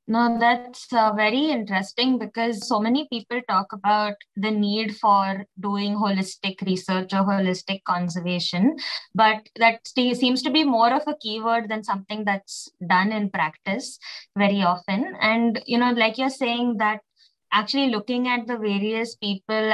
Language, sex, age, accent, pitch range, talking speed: English, female, 20-39, Indian, 195-235 Hz, 155 wpm